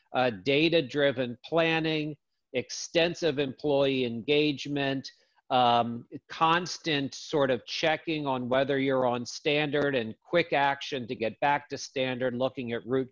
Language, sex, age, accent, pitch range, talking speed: English, male, 50-69, American, 125-155 Hz, 125 wpm